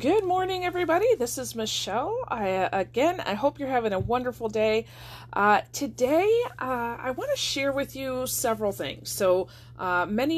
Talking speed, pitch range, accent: 160 wpm, 175-260 Hz, American